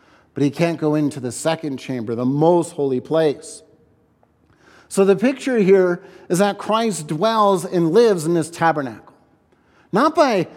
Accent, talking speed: American, 155 wpm